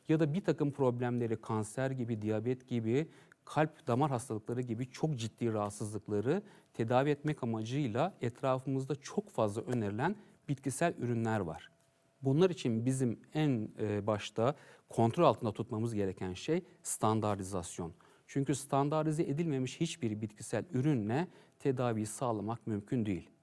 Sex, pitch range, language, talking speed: male, 110-150 Hz, English, 120 wpm